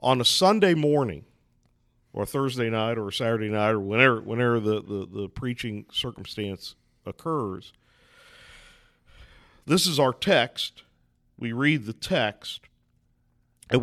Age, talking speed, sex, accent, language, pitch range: 50-69, 130 wpm, male, American, English, 105-150 Hz